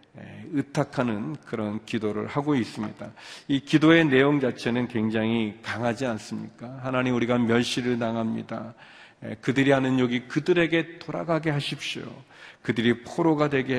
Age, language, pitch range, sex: 40-59, Korean, 115-140 Hz, male